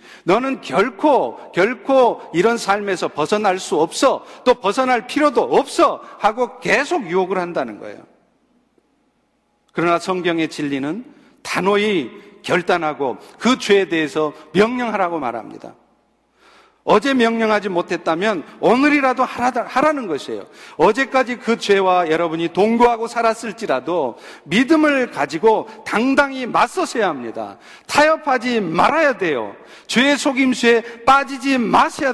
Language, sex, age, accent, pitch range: Korean, male, 50-69, native, 185-260 Hz